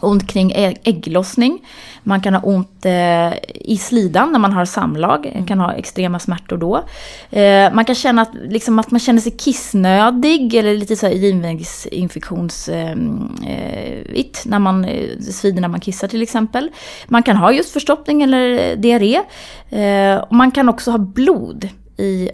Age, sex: 20-39, female